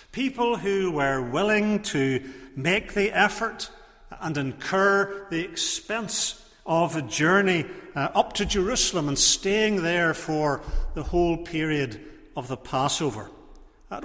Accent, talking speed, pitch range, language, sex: British, 125 wpm, 140-195 Hz, English, male